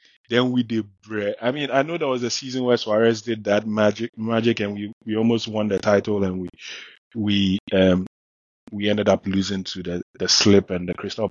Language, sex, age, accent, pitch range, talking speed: English, male, 20-39, Nigerian, 100-120 Hz, 205 wpm